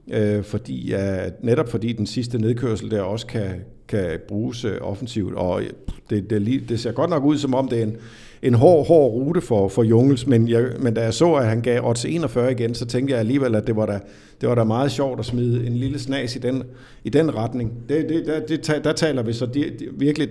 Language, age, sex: Danish, 50-69, male